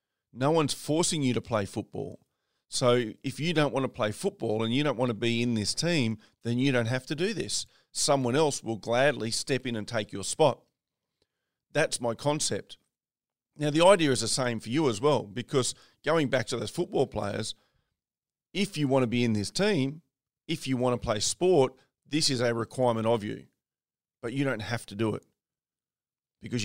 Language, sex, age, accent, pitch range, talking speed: English, male, 40-59, Australian, 115-150 Hz, 200 wpm